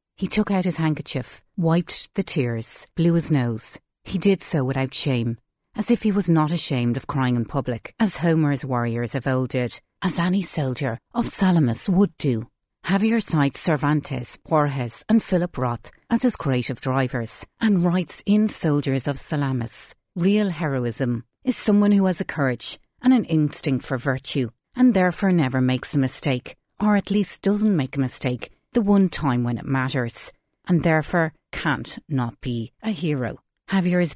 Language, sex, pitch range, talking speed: English, female, 125-185 Hz, 170 wpm